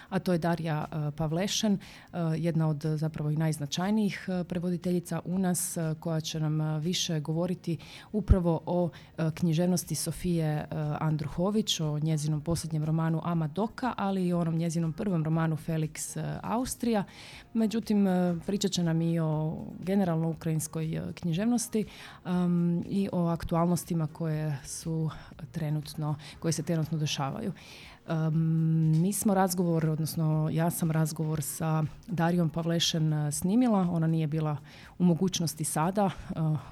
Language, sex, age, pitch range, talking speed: Croatian, female, 30-49, 155-180 Hz, 125 wpm